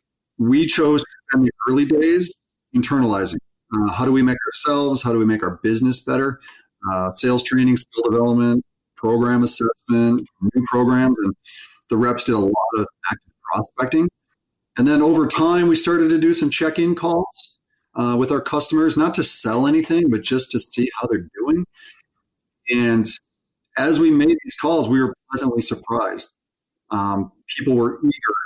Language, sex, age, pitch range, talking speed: English, male, 30-49, 115-165 Hz, 165 wpm